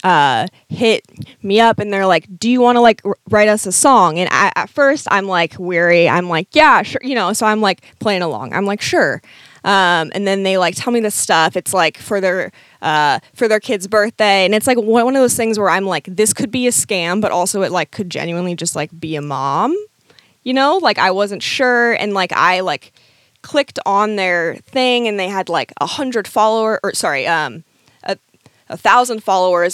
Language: English